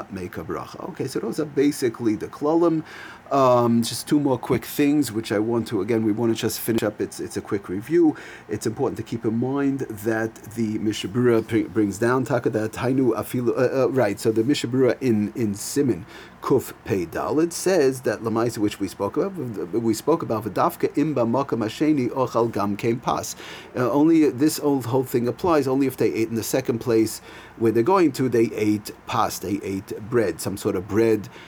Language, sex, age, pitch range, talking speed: English, male, 40-59, 110-125 Hz, 195 wpm